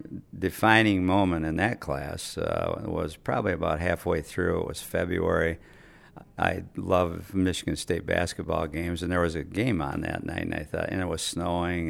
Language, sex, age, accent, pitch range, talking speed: English, male, 50-69, American, 80-95 Hz, 175 wpm